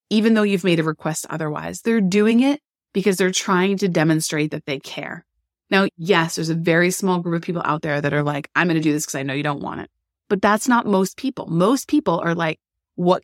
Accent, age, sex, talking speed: American, 30-49, female, 245 wpm